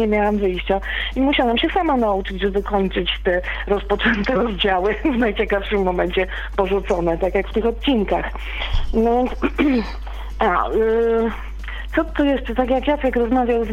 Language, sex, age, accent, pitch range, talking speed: Polish, female, 40-59, native, 200-255 Hz, 135 wpm